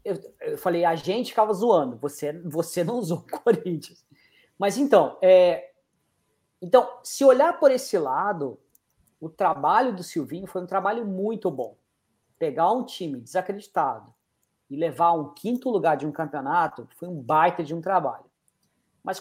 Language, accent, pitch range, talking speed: Portuguese, Brazilian, 170-230 Hz, 155 wpm